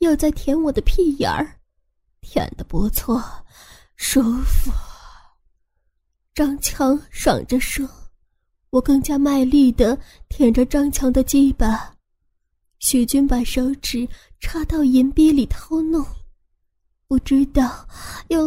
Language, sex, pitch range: Chinese, female, 255-300 Hz